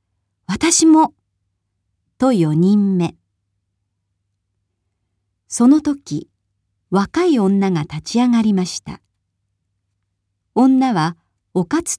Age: 40-59